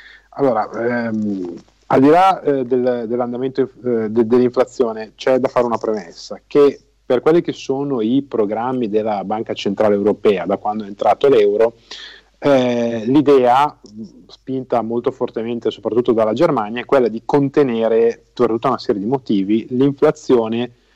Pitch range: 115-135 Hz